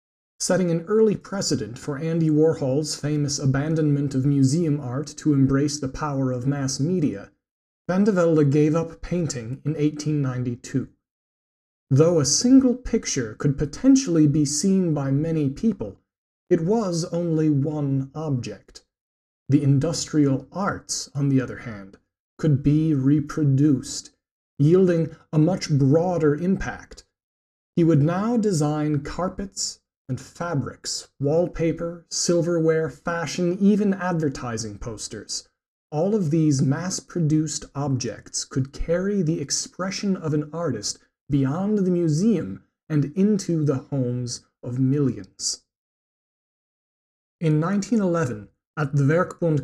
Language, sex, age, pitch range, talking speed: English, male, 40-59, 140-170 Hz, 115 wpm